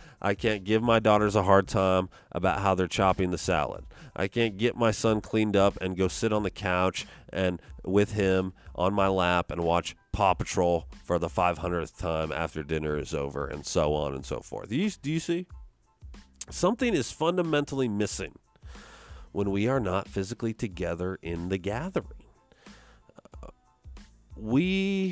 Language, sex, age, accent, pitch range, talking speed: English, male, 40-59, American, 90-130 Hz, 165 wpm